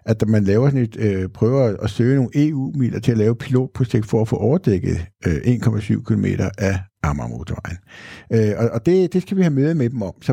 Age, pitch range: 60-79, 105-140 Hz